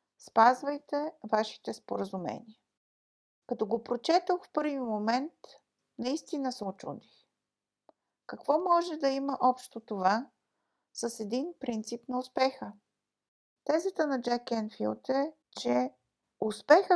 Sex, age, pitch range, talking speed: female, 50-69, 220-285 Hz, 105 wpm